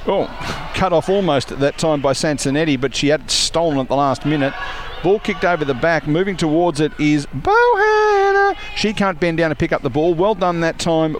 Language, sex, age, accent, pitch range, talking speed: English, male, 50-69, Australian, 135-175 Hz, 220 wpm